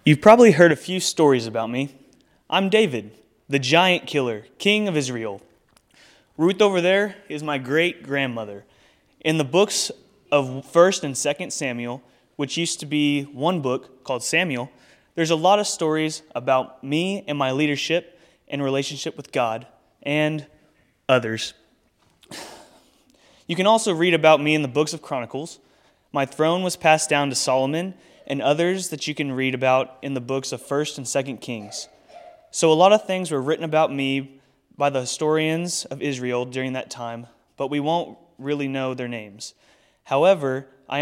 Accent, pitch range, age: American, 130-165 Hz, 20-39